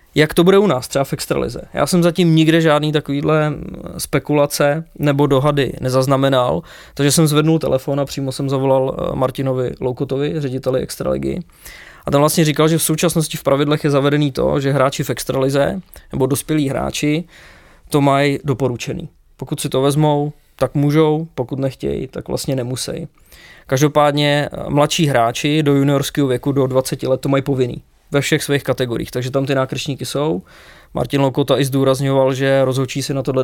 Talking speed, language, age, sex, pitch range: 165 wpm, English, 20-39, male, 135-150 Hz